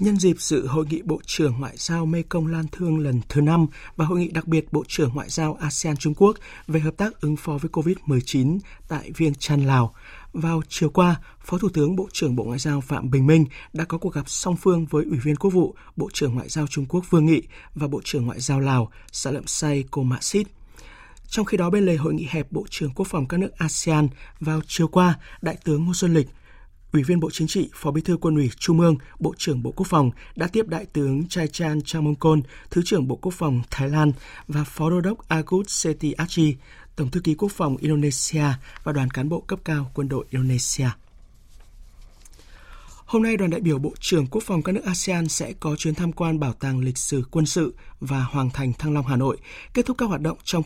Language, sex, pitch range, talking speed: Vietnamese, male, 145-175 Hz, 230 wpm